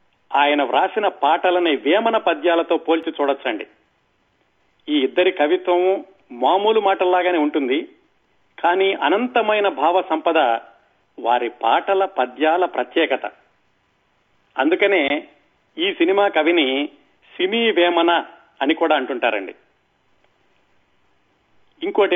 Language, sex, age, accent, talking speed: Telugu, male, 40-59, native, 85 wpm